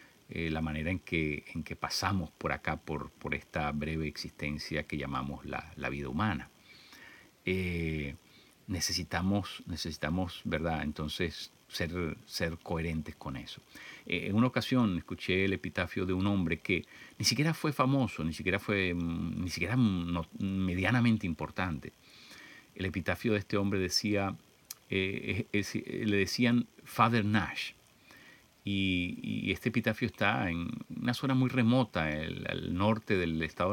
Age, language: 50-69, Spanish